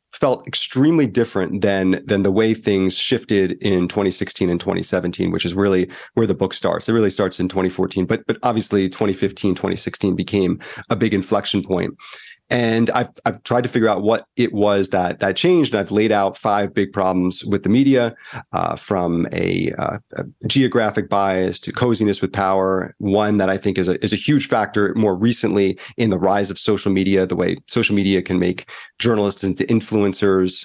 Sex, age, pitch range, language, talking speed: male, 30-49, 95-115 Hz, English, 190 wpm